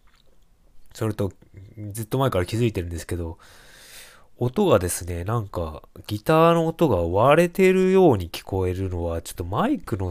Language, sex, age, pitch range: Japanese, male, 20-39, 90-120 Hz